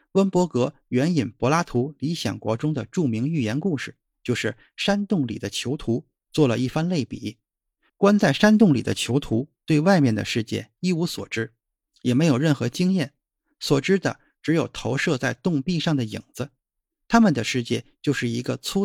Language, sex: Chinese, male